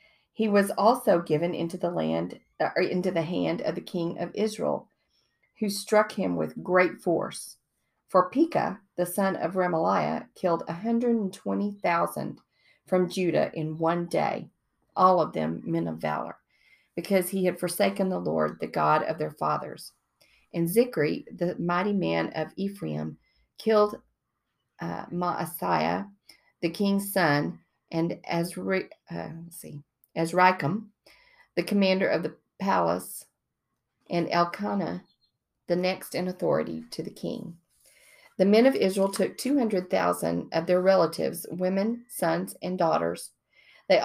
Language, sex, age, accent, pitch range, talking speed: English, female, 40-59, American, 165-205 Hz, 140 wpm